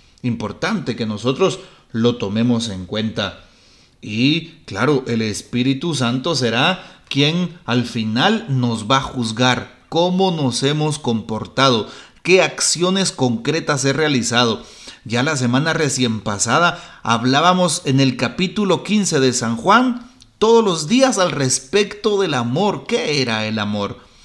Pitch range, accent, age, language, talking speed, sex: 120-170 Hz, Mexican, 40-59, Spanish, 130 wpm, male